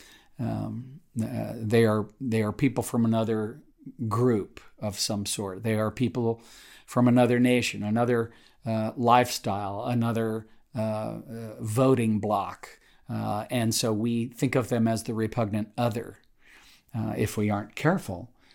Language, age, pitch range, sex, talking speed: English, 50-69, 110-130 Hz, male, 140 wpm